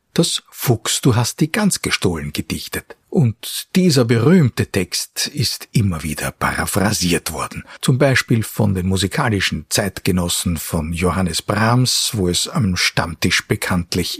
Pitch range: 90-125 Hz